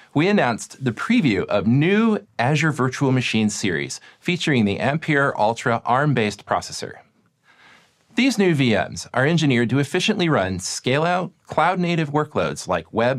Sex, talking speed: male, 140 wpm